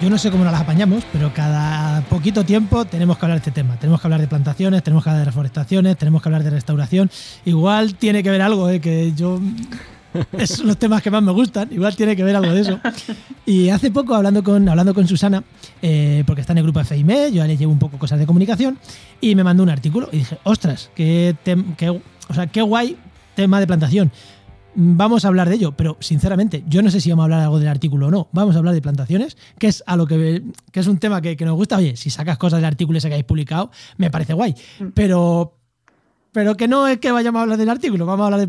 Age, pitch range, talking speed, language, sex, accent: 20-39, 160-215 Hz, 250 wpm, Spanish, male, Spanish